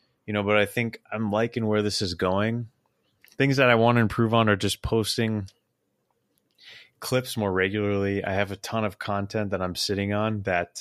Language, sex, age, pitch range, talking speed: English, male, 20-39, 95-115 Hz, 195 wpm